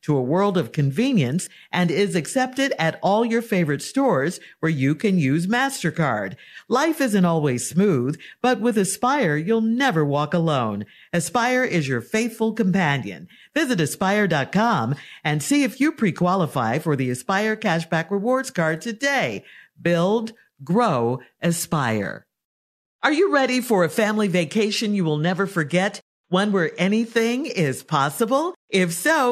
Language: English